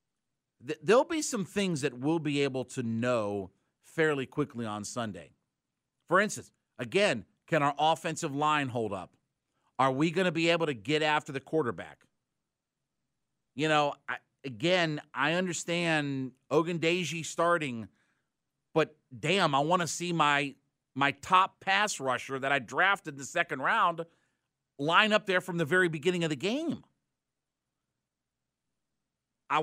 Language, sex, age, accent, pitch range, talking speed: English, male, 50-69, American, 140-200 Hz, 145 wpm